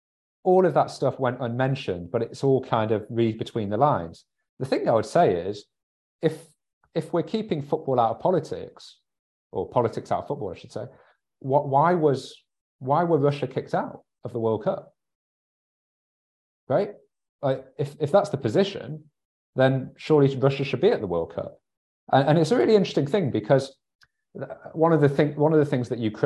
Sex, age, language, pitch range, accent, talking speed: male, 30-49, English, 110-145 Hz, British, 190 wpm